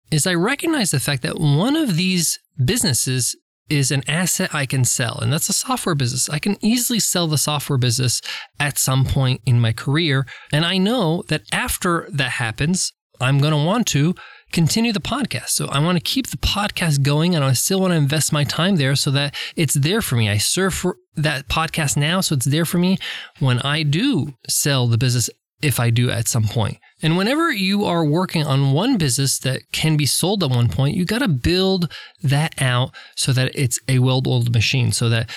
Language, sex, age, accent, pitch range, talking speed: English, male, 20-39, American, 130-180 Hz, 210 wpm